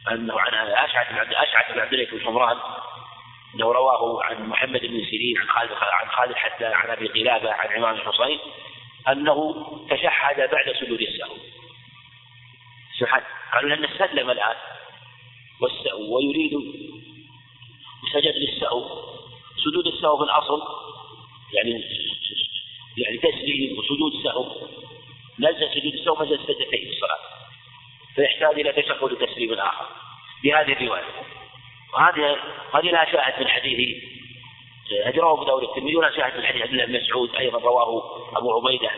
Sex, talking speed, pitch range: male, 120 wpm, 120-155 Hz